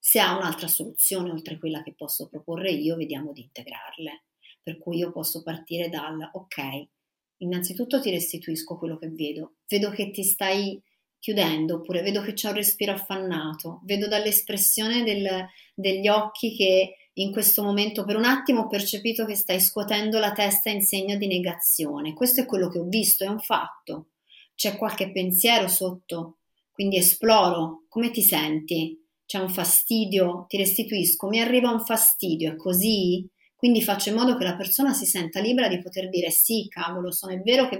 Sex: female